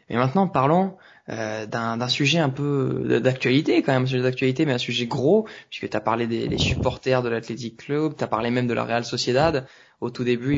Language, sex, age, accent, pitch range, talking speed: French, male, 20-39, French, 120-145 Hz, 225 wpm